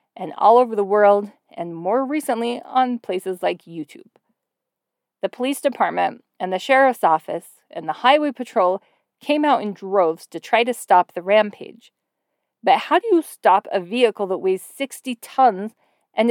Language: English